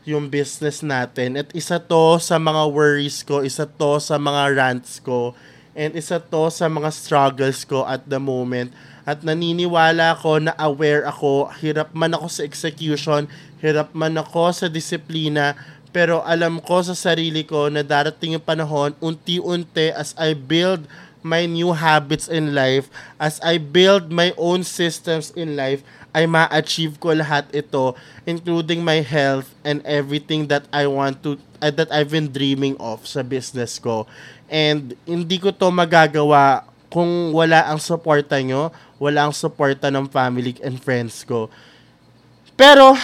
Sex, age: male, 20-39